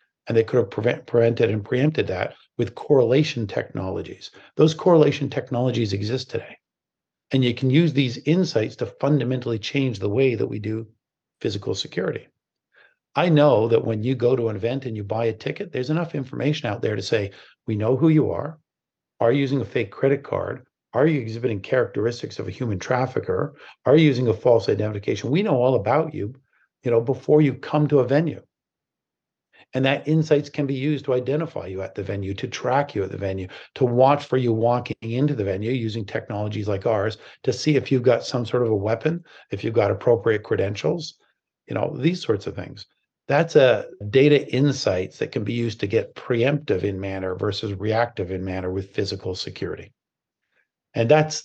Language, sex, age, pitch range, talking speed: English, male, 50-69, 110-145 Hz, 190 wpm